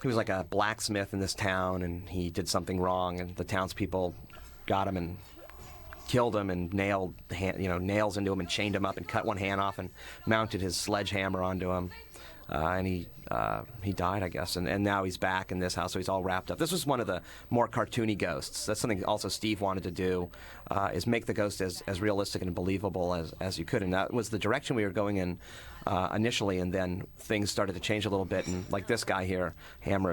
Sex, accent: male, American